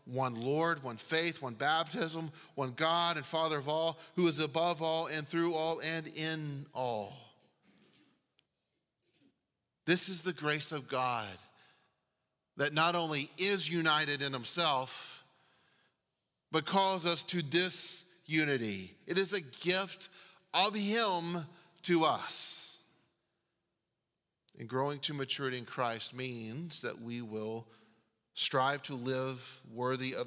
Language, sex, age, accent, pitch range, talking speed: English, male, 40-59, American, 120-165 Hz, 125 wpm